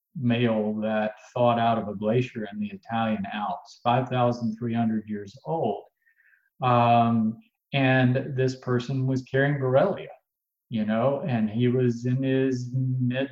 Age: 40-59